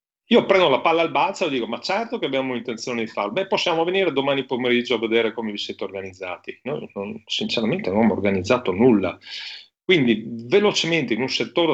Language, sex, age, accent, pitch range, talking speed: Italian, male, 40-59, native, 100-120 Hz, 195 wpm